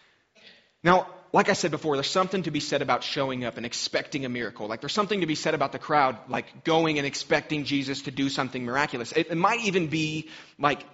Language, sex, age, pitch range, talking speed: English, male, 30-49, 135-180 Hz, 220 wpm